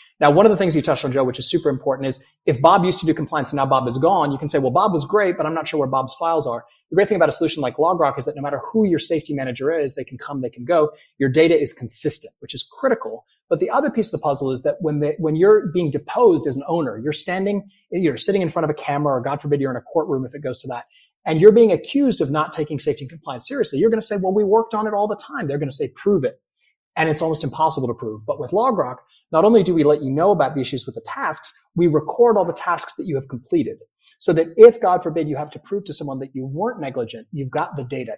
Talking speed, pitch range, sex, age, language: 295 wpm, 140-205 Hz, male, 30-49, English